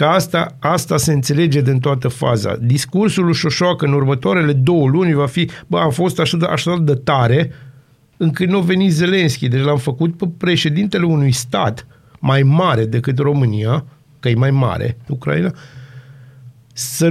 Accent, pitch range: native, 130-165 Hz